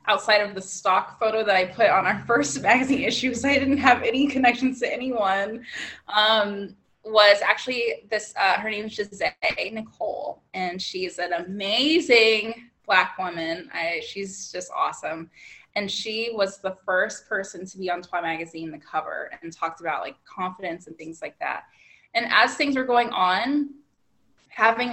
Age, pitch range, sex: 20-39, 185-235 Hz, female